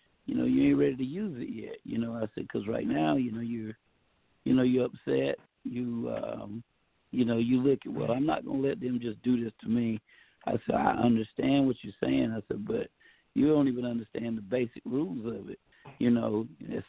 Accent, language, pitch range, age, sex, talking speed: American, English, 115-150 Hz, 60-79, male, 225 wpm